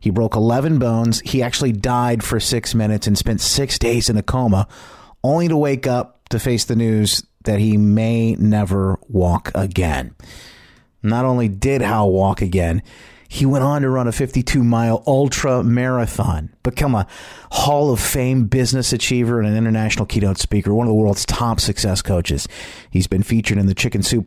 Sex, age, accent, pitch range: male, 30-49, American, 100-125 Hz